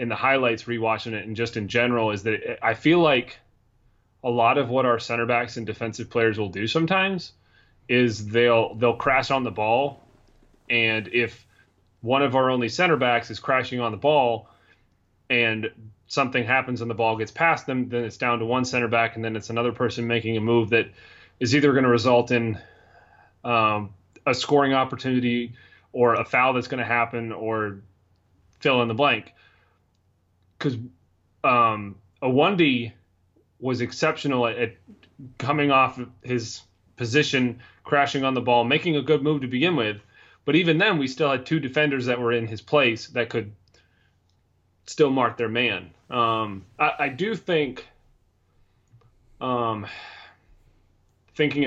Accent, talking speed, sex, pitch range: American, 165 wpm, male, 110-130 Hz